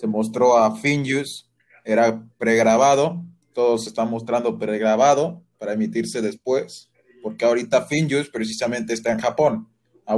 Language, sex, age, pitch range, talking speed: Spanish, male, 20-39, 115-150 Hz, 125 wpm